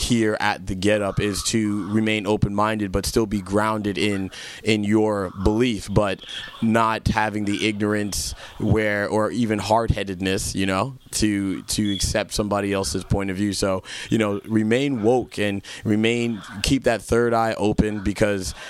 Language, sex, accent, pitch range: English, male, American, 100-115 Hz